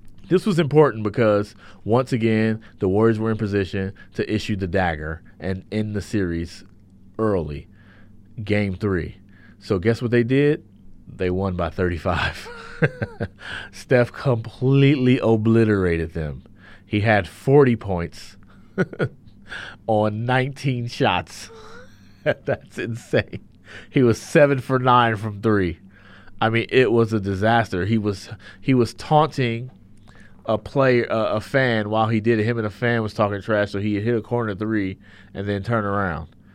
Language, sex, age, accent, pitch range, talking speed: English, male, 30-49, American, 95-115 Hz, 140 wpm